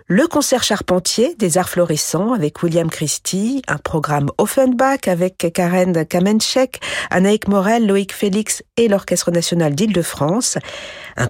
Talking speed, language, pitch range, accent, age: 125 wpm, French, 150-210 Hz, French, 50-69